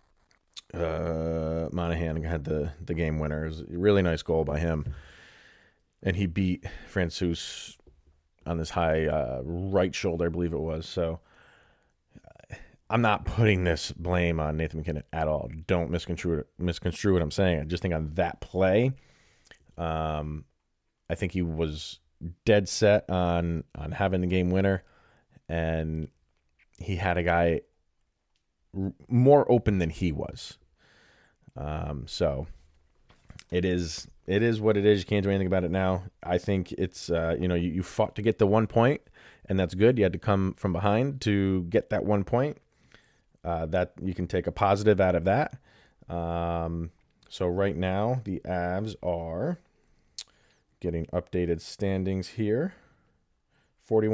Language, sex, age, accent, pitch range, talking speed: English, male, 30-49, American, 80-100 Hz, 155 wpm